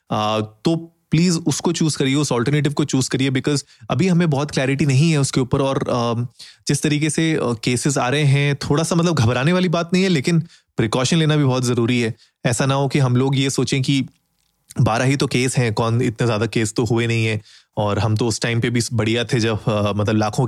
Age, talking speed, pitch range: 20-39, 225 wpm, 120-150 Hz